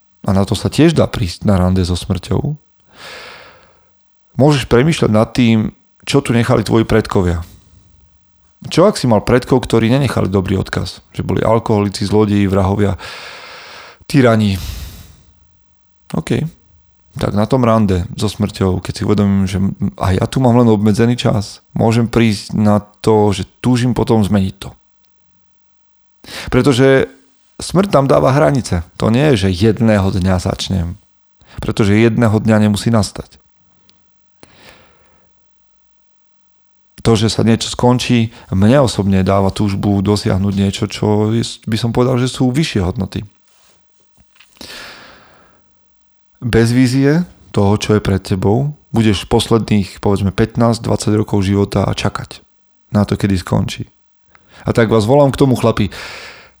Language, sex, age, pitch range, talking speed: Slovak, male, 40-59, 95-120 Hz, 130 wpm